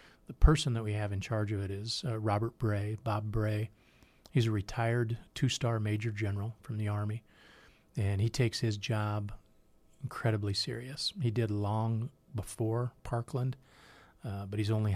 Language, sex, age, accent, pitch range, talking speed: English, male, 40-59, American, 105-125 Hz, 160 wpm